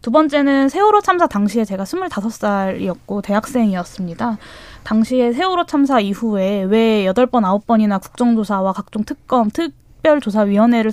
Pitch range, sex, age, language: 205-275 Hz, female, 20-39, Korean